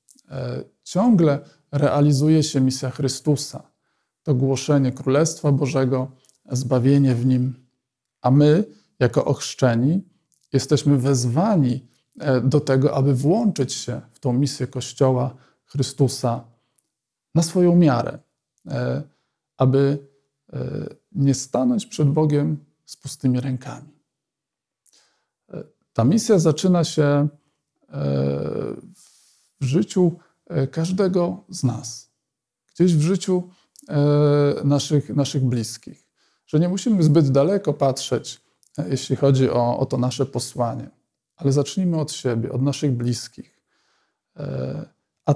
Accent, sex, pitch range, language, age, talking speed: native, male, 125-155 Hz, Polish, 50-69, 100 wpm